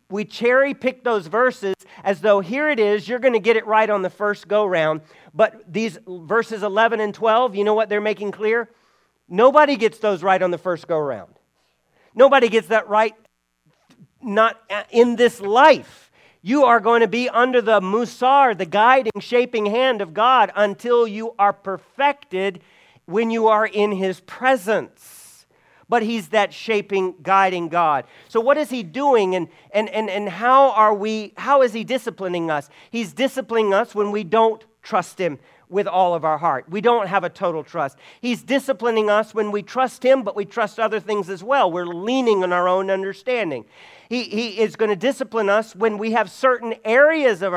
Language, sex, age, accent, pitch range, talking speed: English, male, 40-59, American, 190-235 Hz, 185 wpm